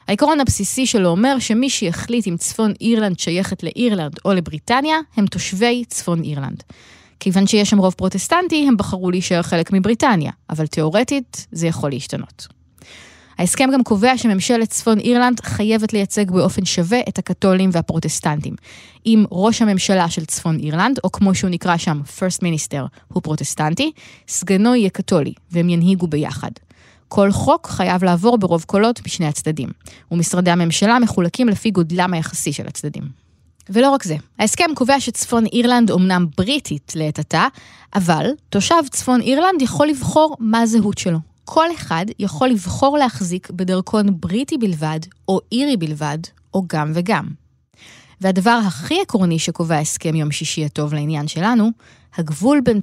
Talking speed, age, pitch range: 145 wpm, 20-39, 170-235 Hz